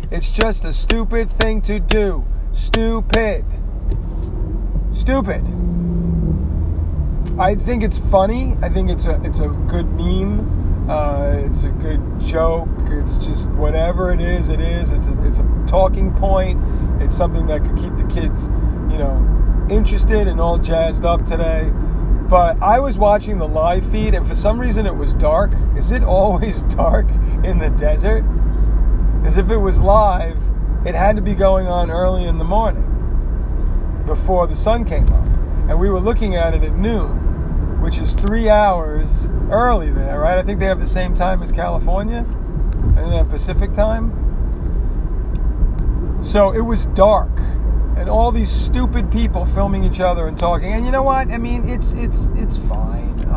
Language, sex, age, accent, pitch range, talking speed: English, male, 30-49, American, 70-100 Hz, 165 wpm